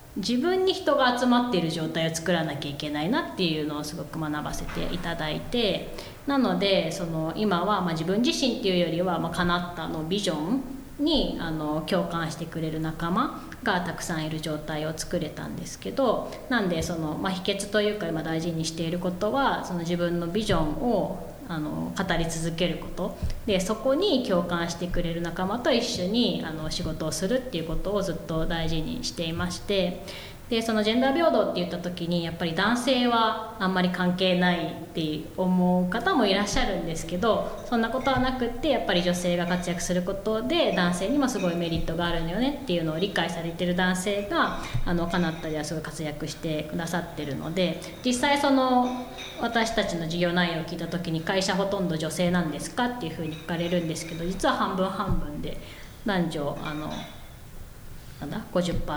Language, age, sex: Japanese, 20-39, female